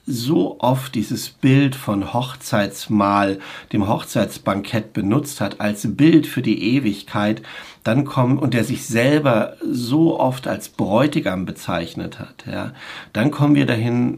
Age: 60-79